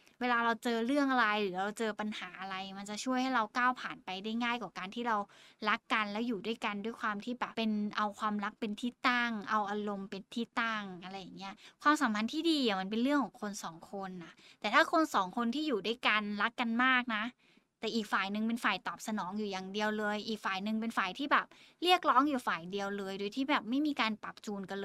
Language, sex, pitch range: Thai, female, 205-255 Hz